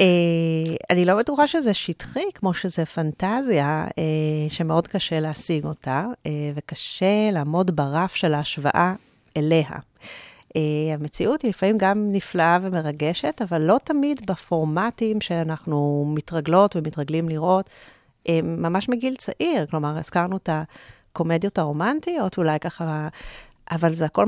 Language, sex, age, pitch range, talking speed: Hebrew, female, 30-49, 155-195 Hz, 125 wpm